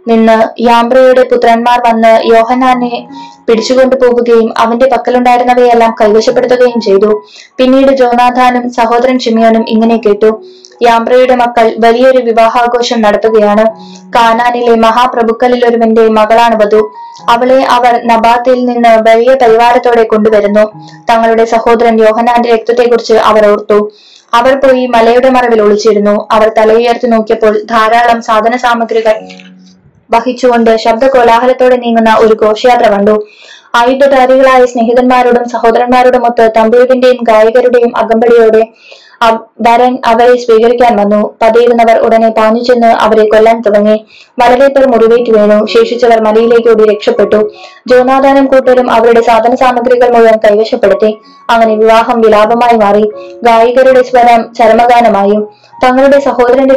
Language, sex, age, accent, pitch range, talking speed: Malayalam, female, 20-39, native, 220-245 Hz, 100 wpm